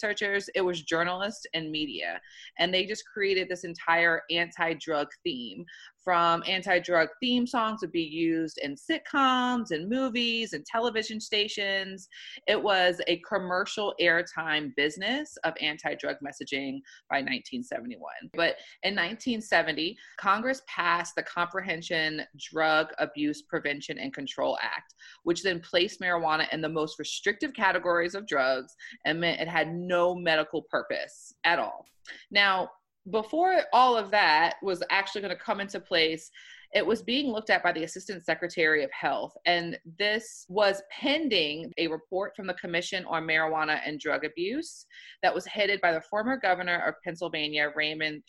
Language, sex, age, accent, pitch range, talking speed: English, female, 30-49, American, 160-215 Hz, 150 wpm